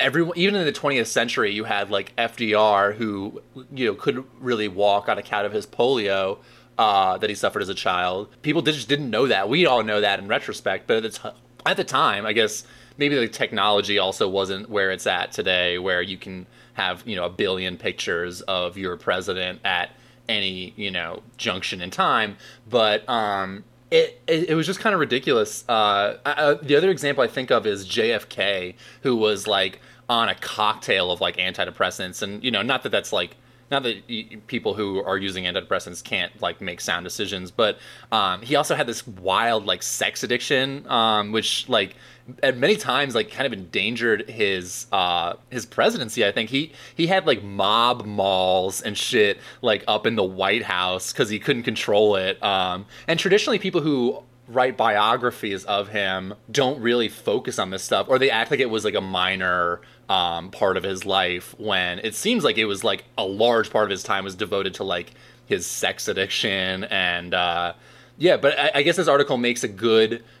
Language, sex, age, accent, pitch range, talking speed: English, male, 20-39, American, 95-130 Hz, 200 wpm